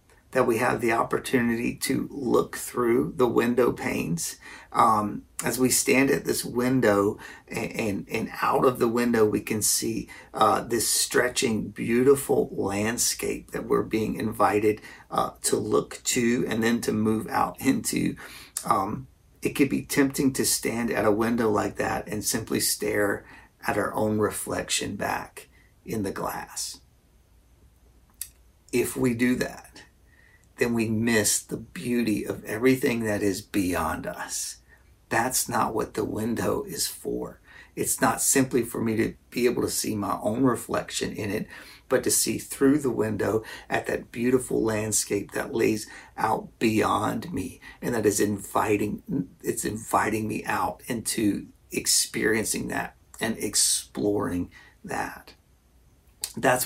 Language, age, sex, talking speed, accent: English, 40-59, male, 145 wpm, American